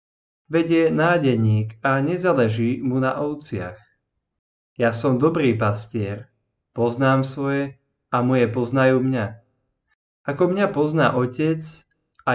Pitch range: 115-140 Hz